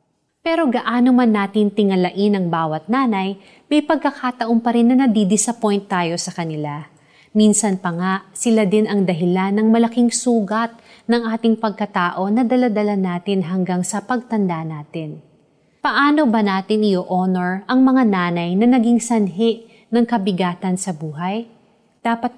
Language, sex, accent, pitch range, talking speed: Filipino, female, native, 180-225 Hz, 140 wpm